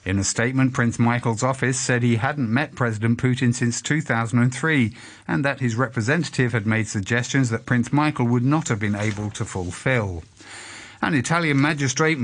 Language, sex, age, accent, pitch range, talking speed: English, male, 50-69, British, 100-130 Hz, 165 wpm